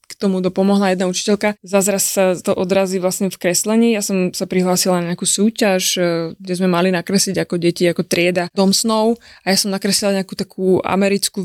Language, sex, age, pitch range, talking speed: Slovak, female, 20-39, 185-220 Hz, 190 wpm